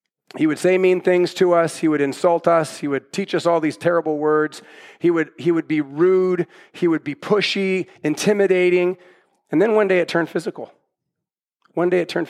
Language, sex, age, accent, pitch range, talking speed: English, male, 40-59, American, 170-210 Hz, 200 wpm